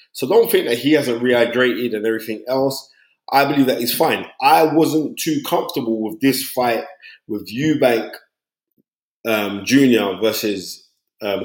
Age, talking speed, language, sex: 20-39, 145 wpm, English, male